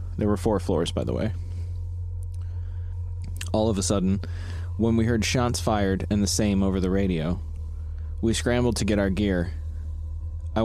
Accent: American